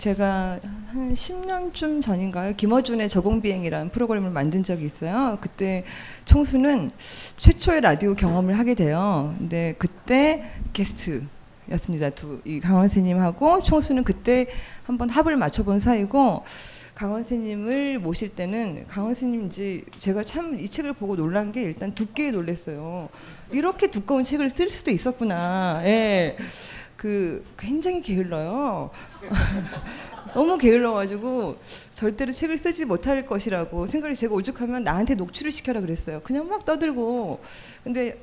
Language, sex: Korean, female